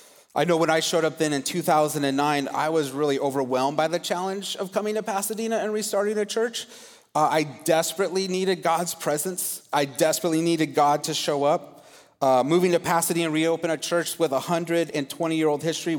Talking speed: 190 wpm